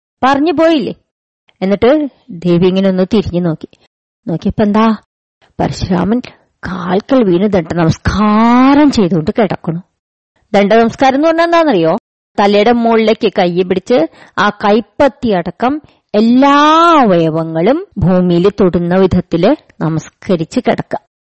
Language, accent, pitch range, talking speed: Malayalam, native, 175-250 Hz, 100 wpm